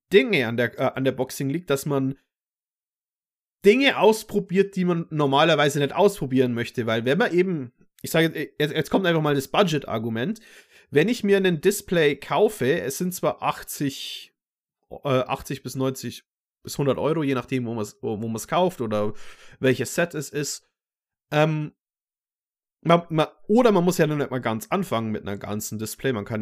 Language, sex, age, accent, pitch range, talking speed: German, male, 30-49, German, 130-175 Hz, 180 wpm